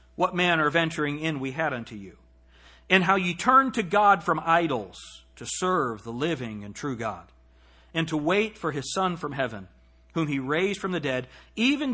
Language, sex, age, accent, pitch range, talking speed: English, male, 40-59, American, 125-205 Hz, 195 wpm